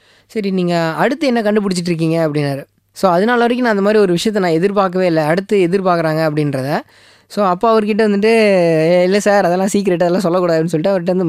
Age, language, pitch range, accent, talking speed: 20-39, Tamil, 165-205 Hz, native, 160 wpm